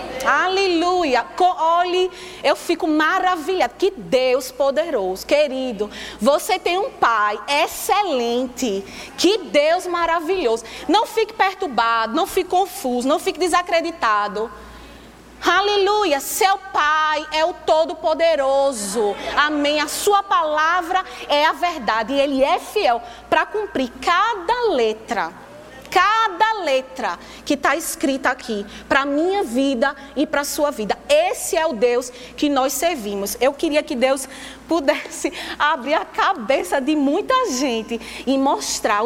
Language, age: Portuguese, 20-39